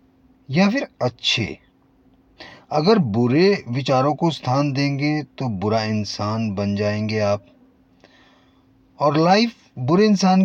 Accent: native